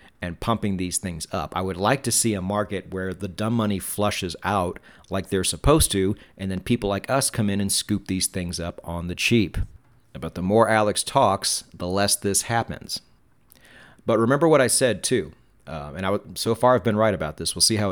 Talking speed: 220 wpm